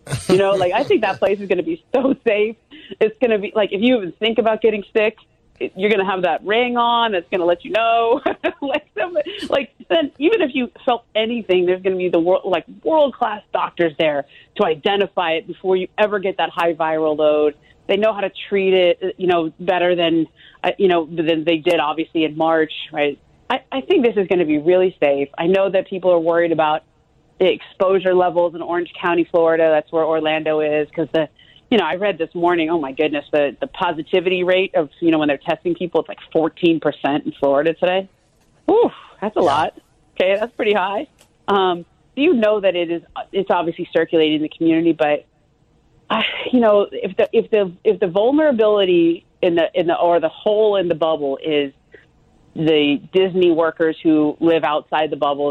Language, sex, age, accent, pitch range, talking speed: English, female, 30-49, American, 160-205 Hz, 210 wpm